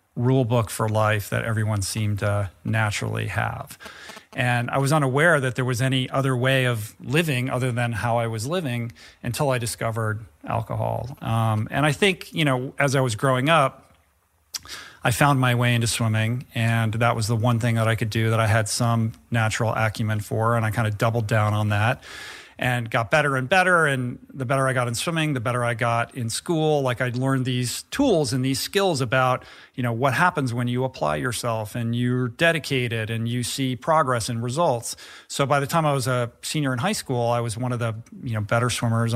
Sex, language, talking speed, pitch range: male, English, 210 wpm, 115-130 Hz